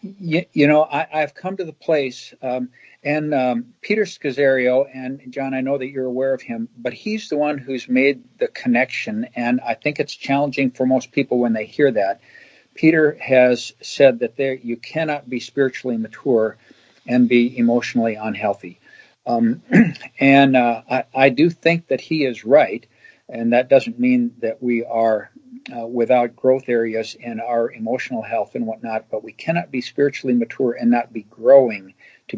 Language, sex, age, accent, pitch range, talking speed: English, male, 50-69, American, 120-155 Hz, 180 wpm